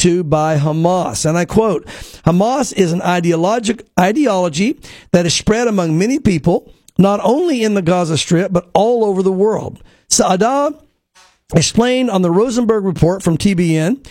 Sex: male